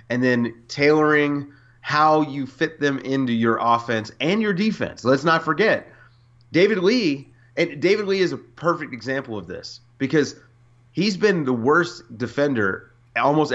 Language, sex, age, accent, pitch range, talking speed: English, male, 30-49, American, 120-150 Hz, 150 wpm